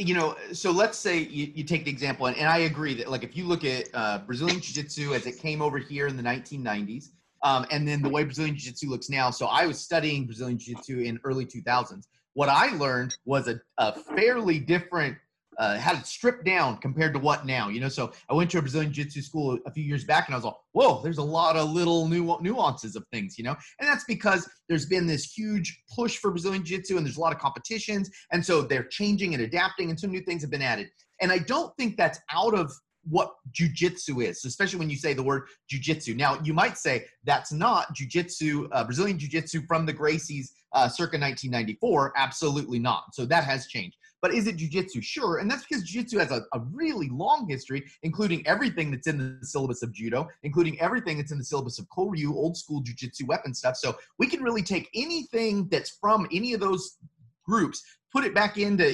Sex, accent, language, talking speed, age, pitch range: male, American, English, 220 wpm, 30-49, 135-185 Hz